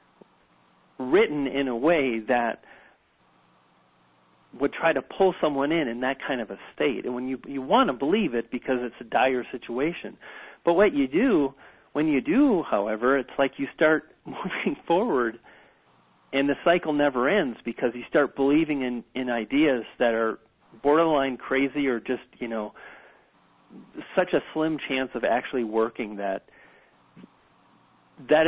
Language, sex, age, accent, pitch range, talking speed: English, male, 40-59, American, 115-145 Hz, 155 wpm